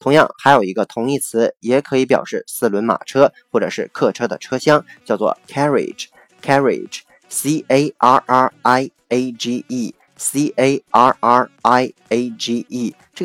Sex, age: male, 20-39